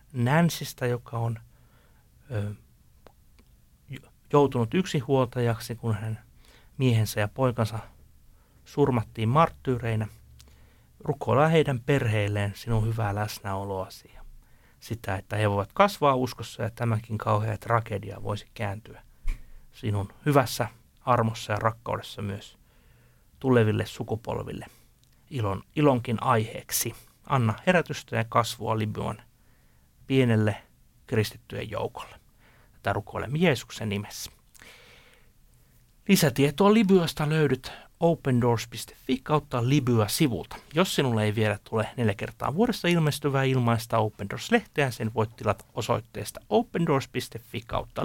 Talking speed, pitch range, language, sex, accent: 95 wpm, 105-140 Hz, Finnish, male, native